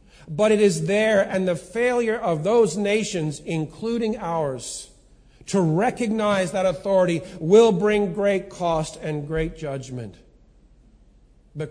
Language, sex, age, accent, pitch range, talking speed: English, male, 50-69, American, 170-210 Hz, 125 wpm